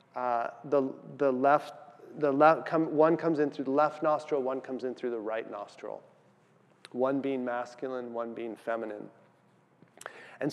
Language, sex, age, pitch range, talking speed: English, male, 30-49, 130-155 Hz, 160 wpm